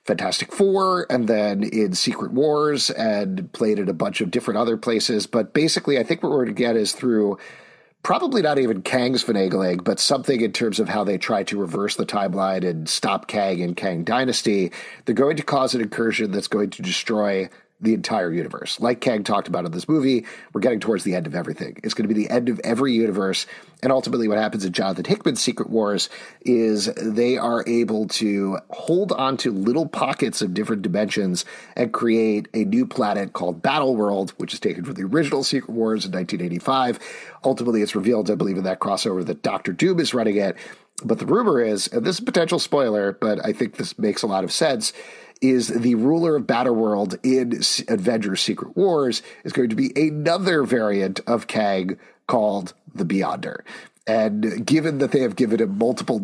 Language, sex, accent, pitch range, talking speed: English, male, American, 100-130 Hz, 200 wpm